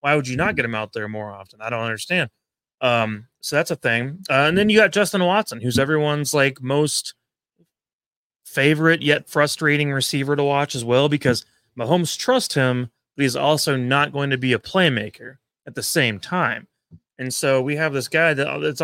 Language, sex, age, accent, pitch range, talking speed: English, male, 30-49, American, 125-160 Hz, 195 wpm